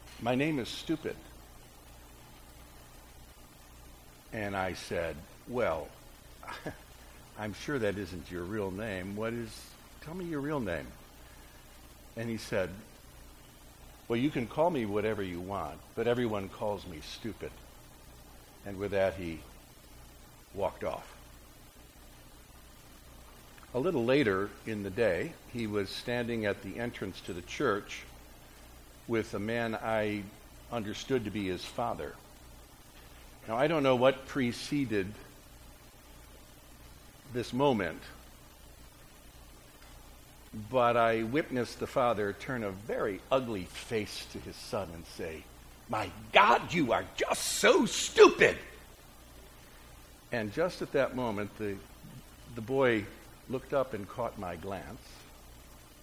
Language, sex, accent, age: English, male, American, 60-79